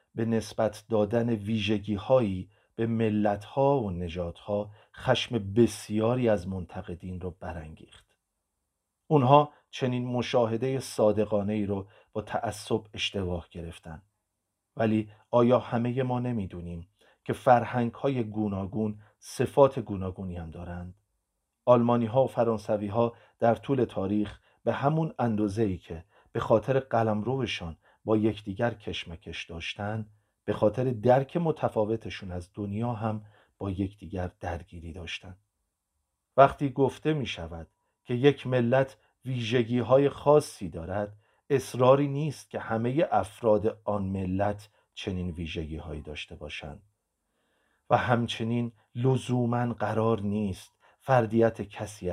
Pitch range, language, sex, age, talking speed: 95-120 Hz, Persian, male, 40-59, 105 wpm